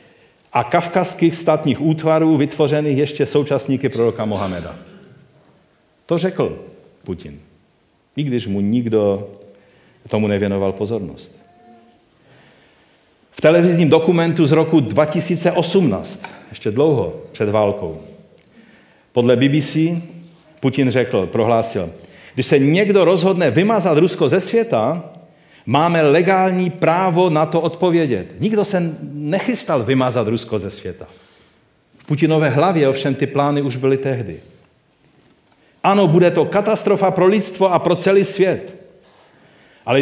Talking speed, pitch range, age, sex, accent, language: 110 wpm, 125-180 Hz, 40-59, male, native, Czech